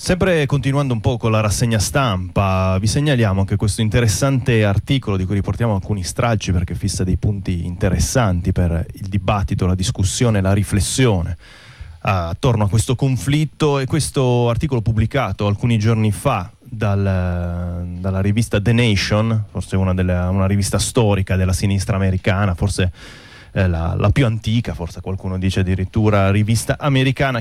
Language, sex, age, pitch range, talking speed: Italian, male, 30-49, 100-125 Hz, 150 wpm